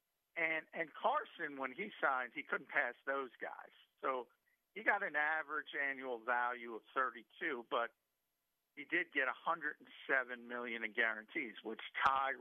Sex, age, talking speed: male, 50-69, 145 wpm